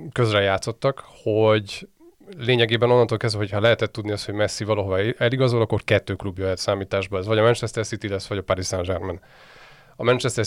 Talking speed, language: 180 wpm, Hungarian